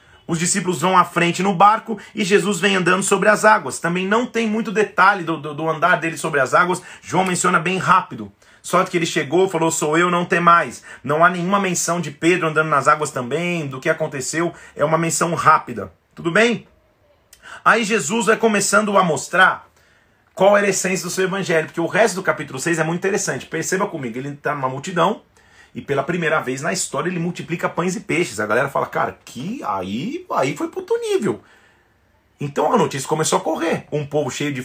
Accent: Brazilian